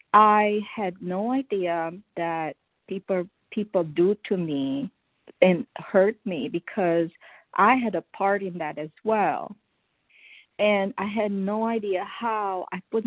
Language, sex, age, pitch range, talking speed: English, female, 40-59, 195-260 Hz, 140 wpm